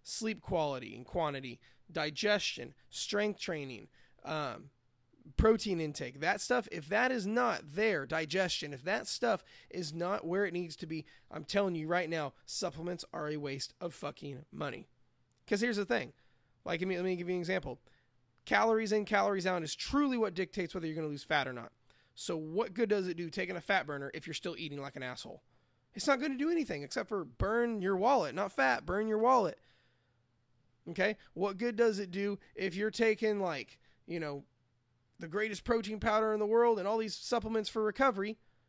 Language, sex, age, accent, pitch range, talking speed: English, male, 20-39, American, 145-210 Hz, 195 wpm